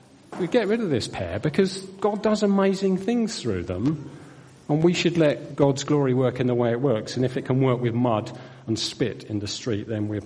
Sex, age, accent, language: male, 40-59, British, English